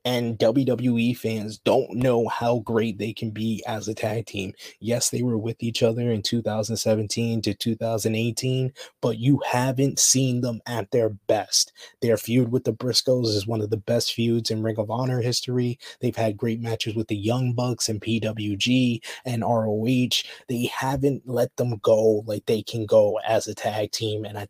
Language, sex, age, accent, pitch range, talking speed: English, male, 20-39, American, 110-120 Hz, 185 wpm